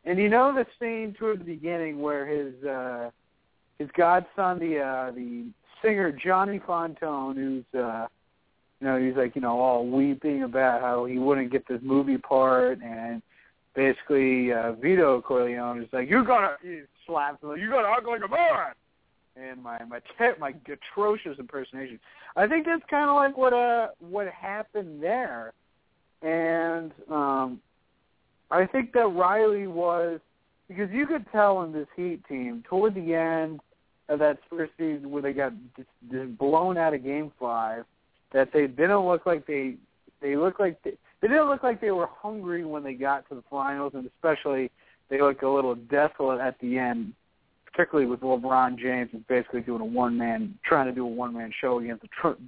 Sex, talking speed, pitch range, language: male, 180 wpm, 130-185 Hz, English